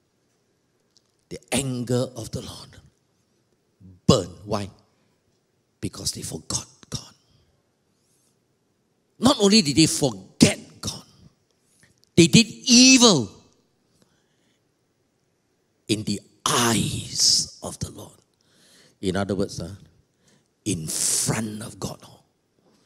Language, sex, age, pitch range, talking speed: English, male, 50-69, 105-175 Hz, 90 wpm